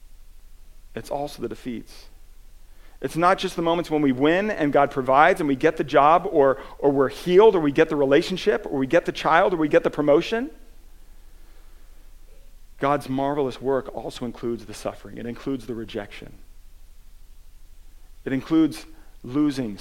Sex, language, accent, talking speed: male, English, American, 160 wpm